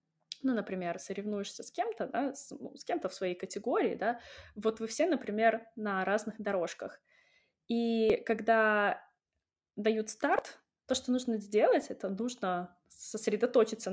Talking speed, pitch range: 140 wpm, 205-275 Hz